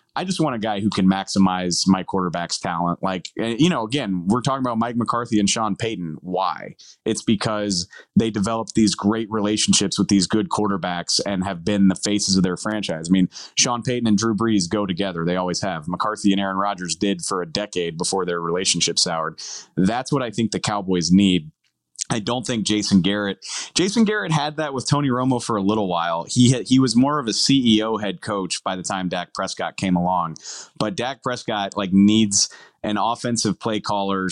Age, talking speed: 20-39, 200 wpm